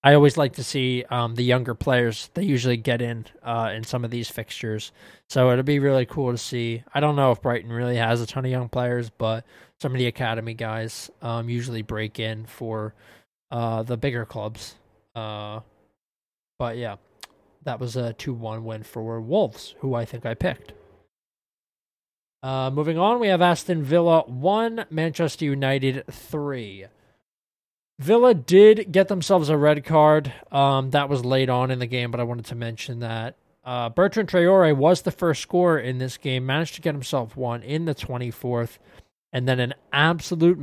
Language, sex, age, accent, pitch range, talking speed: English, male, 20-39, American, 115-145 Hz, 180 wpm